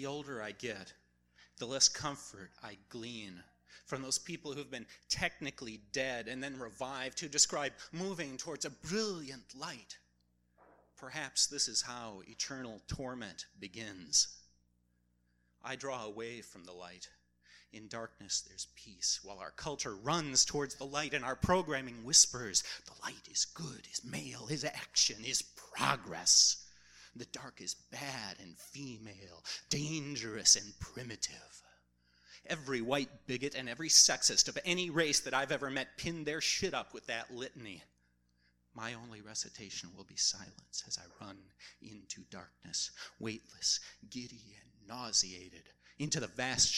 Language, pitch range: English, 95-140 Hz